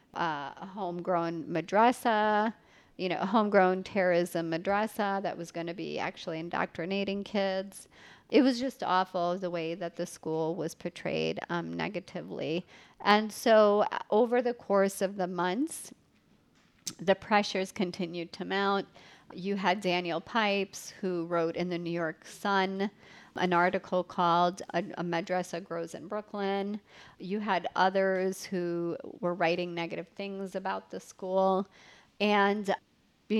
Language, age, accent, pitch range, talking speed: English, 40-59, American, 170-200 Hz, 140 wpm